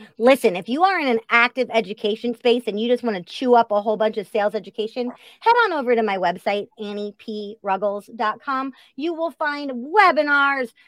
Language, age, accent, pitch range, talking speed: English, 30-49, American, 205-265 Hz, 180 wpm